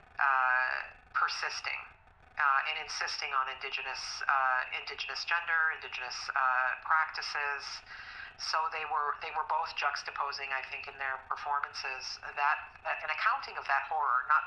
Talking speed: 135 wpm